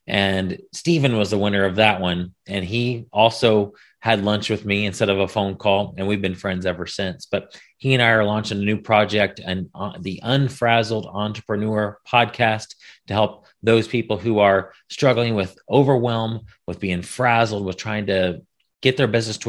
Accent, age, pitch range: American, 30-49, 100-115 Hz